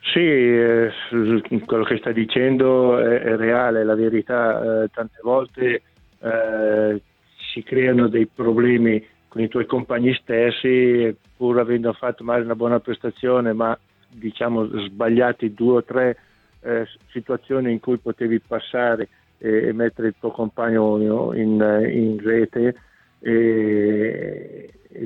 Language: Italian